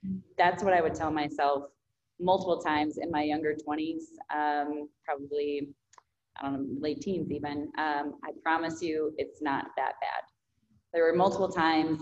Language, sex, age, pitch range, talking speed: English, female, 20-39, 140-160 Hz, 160 wpm